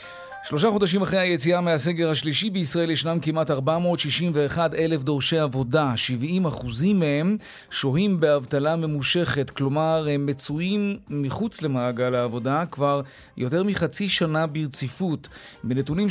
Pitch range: 135-175 Hz